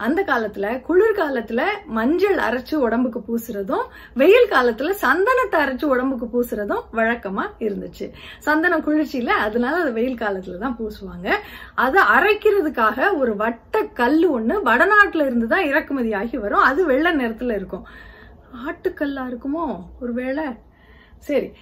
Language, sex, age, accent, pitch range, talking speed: Tamil, female, 30-49, native, 230-330 Hz, 115 wpm